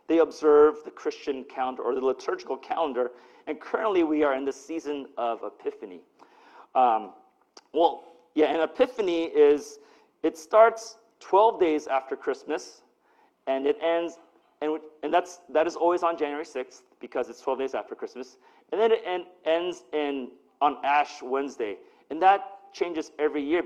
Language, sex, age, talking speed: English, male, 40-59, 155 wpm